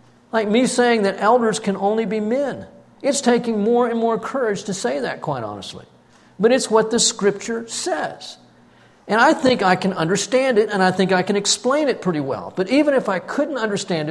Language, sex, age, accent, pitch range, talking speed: English, male, 50-69, American, 160-230 Hz, 205 wpm